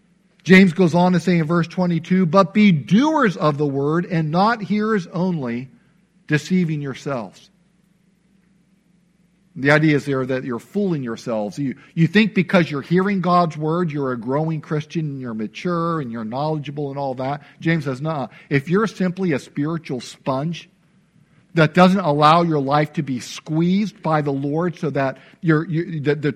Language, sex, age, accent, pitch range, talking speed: English, male, 50-69, American, 145-185 Hz, 170 wpm